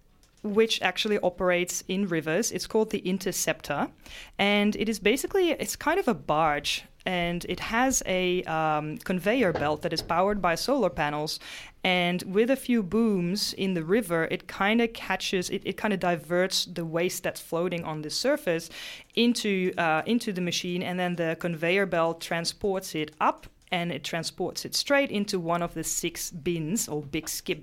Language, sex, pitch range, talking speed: English, female, 165-210 Hz, 175 wpm